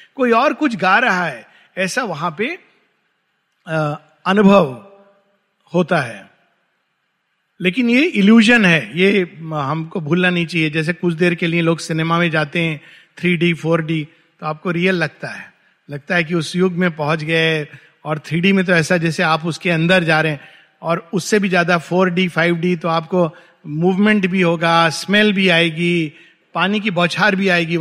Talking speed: 165 wpm